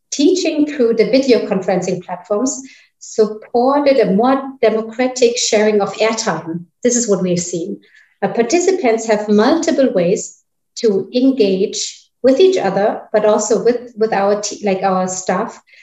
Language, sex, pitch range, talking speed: English, female, 195-245 Hz, 140 wpm